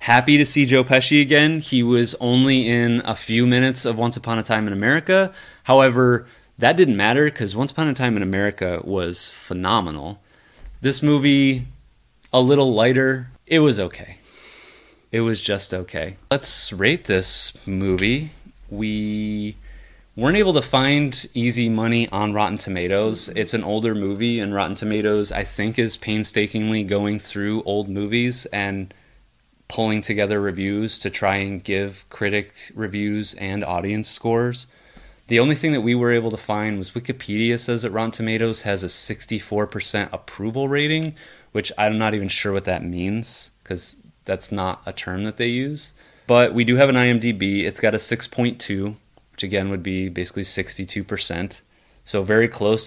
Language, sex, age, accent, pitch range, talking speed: English, male, 30-49, American, 100-125 Hz, 160 wpm